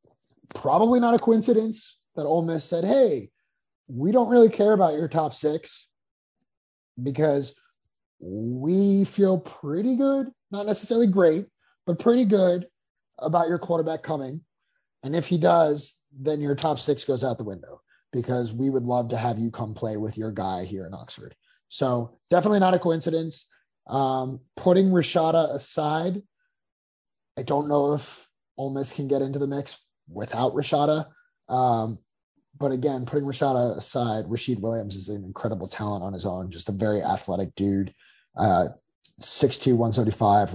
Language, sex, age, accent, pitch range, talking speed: English, male, 30-49, American, 110-165 Hz, 155 wpm